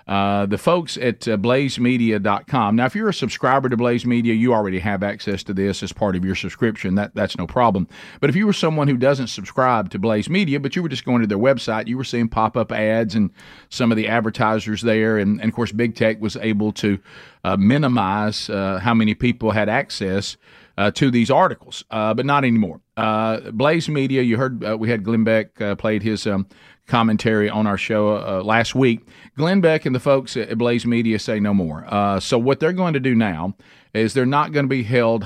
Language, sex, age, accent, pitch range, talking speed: English, male, 50-69, American, 105-130 Hz, 225 wpm